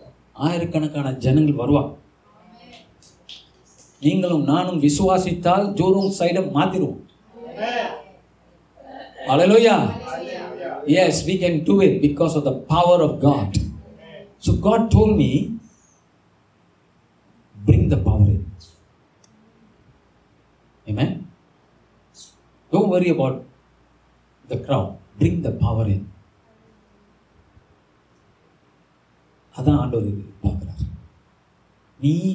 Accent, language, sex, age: native, Tamil, male, 50-69